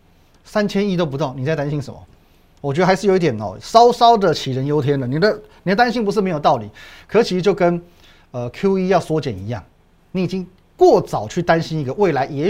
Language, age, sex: Chinese, 30-49, male